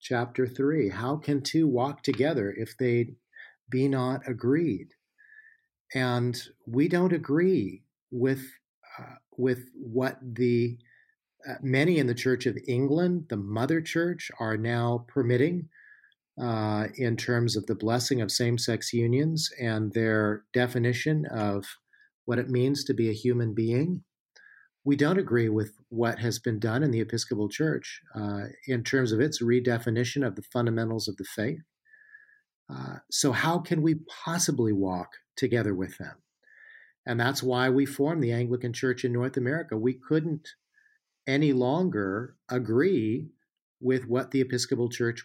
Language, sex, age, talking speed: English, male, 50-69, 145 wpm